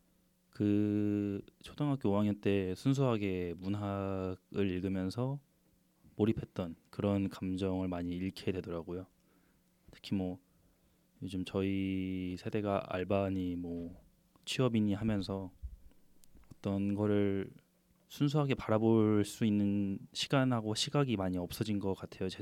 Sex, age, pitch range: male, 20-39, 95-115 Hz